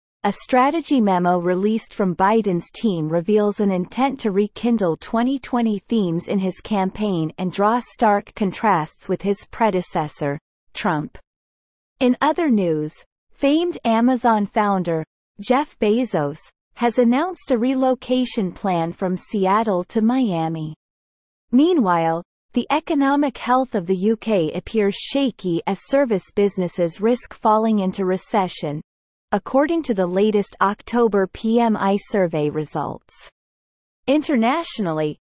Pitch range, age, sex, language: 180-245 Hz, 30-49, female, English